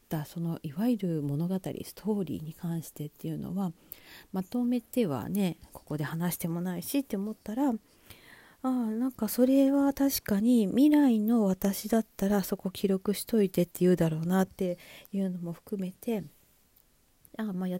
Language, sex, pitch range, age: Japanese, female, 175-230 Hz, 40-59